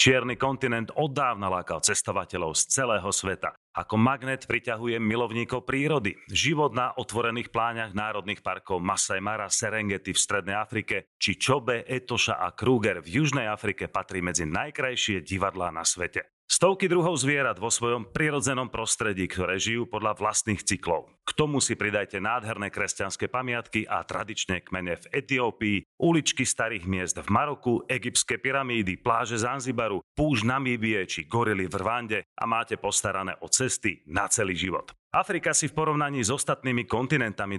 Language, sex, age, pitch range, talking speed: Slovak, male, 40-59, 100-130 Hz, 150 wpm